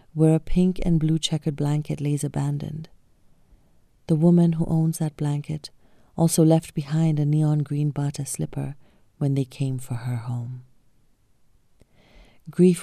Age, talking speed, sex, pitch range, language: 40-59, 140 wpm, female, 140-165 Hz, English